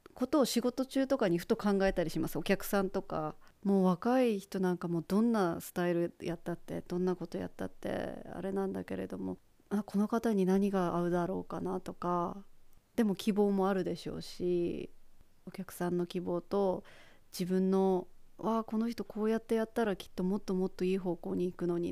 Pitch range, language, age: 175-205 Hz, Japanese, 30-49